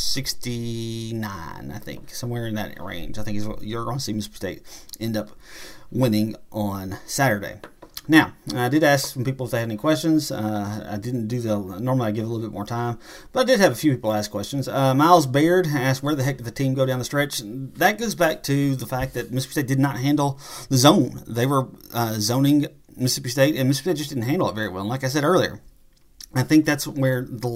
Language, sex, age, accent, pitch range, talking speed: English, male, 30-49, American, 110-145 Hz, 230 wpm